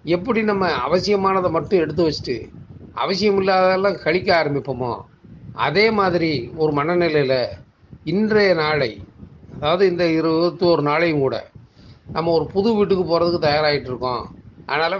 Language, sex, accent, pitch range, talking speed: Tamil, male, native, 140-175 Hz, 120 wpm